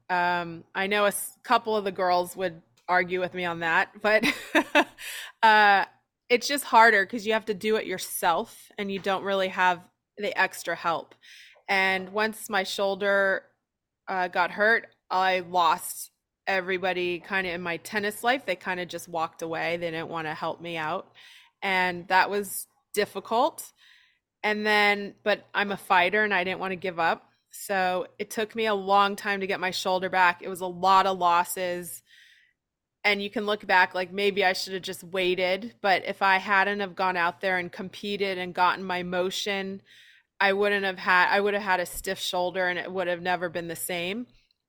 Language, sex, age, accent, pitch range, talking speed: English, female, 20-39, American, 180-205 Hz, 190 wpm